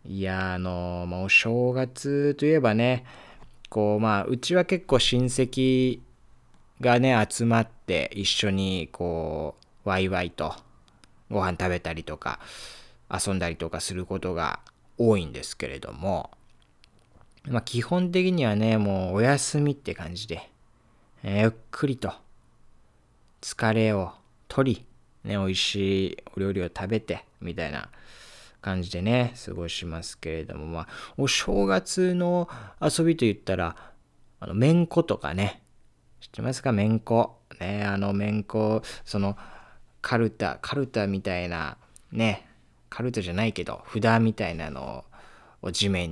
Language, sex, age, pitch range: Japanese, male, 20-39, 90-120 Hz